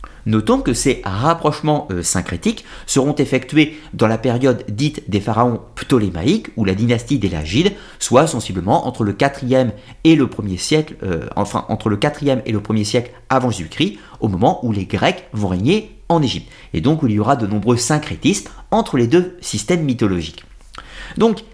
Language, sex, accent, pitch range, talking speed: French, male, French, 110-170 Hz, 165 wpm